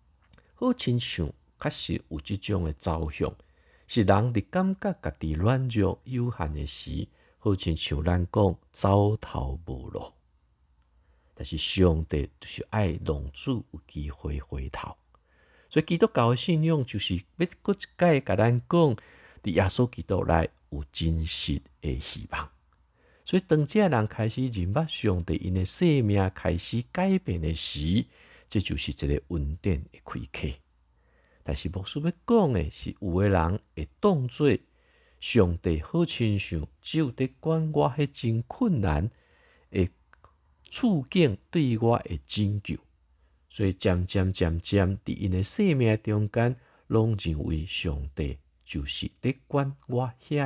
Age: 50-69